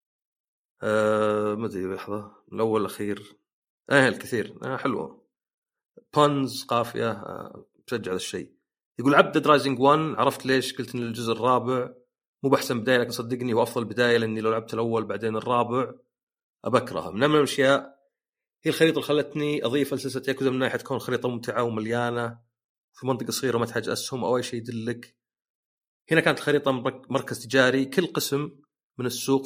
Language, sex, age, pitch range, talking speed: Arabic, male, 40-59, 115-135 Hz, 150 wpm